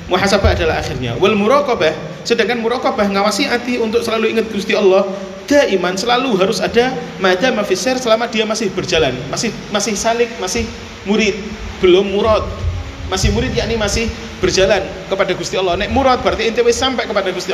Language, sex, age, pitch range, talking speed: Indonesian, male, 30-49, 175-220 Hz, 150 wpm